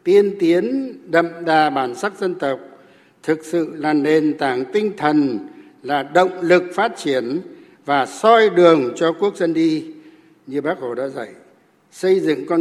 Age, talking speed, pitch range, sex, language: 60-79, 165 wpm, 150-225 Hz, male, Vietnamese